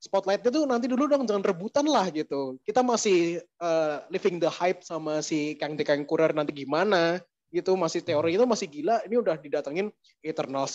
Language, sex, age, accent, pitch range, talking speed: Indonesian, male, 20-39, native, 150-200 Hz, 180 wpm